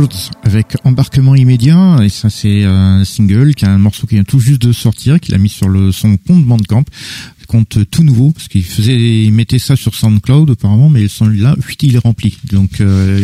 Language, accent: French, French